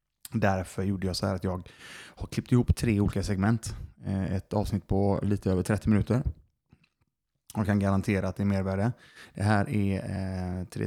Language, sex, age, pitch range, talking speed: Swedish, male, 20-39, 95-110 Hz, 175 wpm